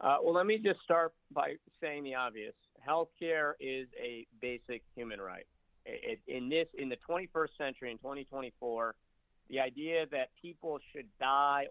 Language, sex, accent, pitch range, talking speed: English, male, American, 110-145 Hz, 165 wpm